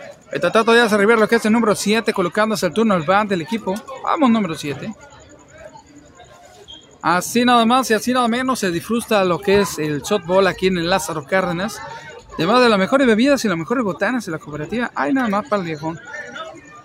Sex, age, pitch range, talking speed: male, 40-59, 195-255 Hz, 205 wpm